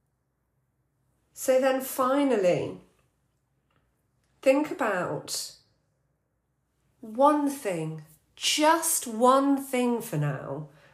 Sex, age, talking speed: female, 40-59, 65 wpm